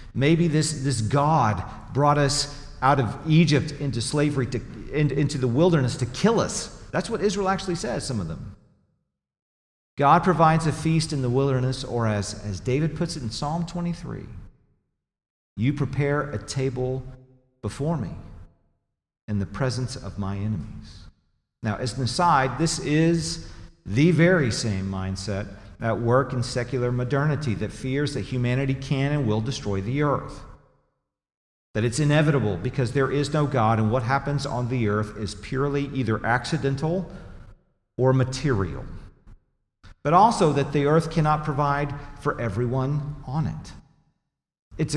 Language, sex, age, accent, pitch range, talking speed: English, male, 40-59, American, 110-145 Hz, 150 wpm